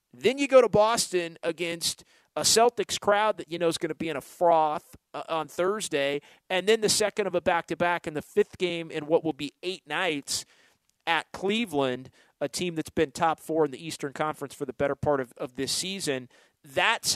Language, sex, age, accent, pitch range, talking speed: English, male, 40-59, American, 145-185 Hz, 205 wpm